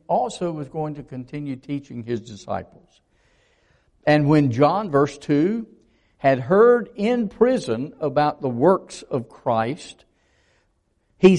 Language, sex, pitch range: English, male, 125-185 Hz